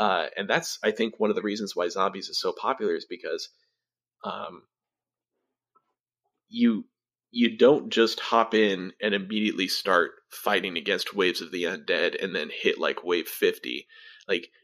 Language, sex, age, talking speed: English, male, 30-49, 160 wpm